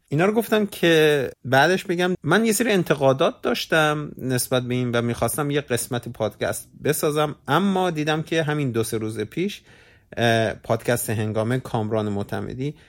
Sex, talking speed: male, 150 wpm